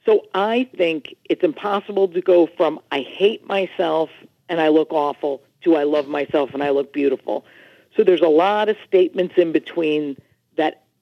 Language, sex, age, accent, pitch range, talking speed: English, female, 50-69, American, 155-205 Hz, 175 wpm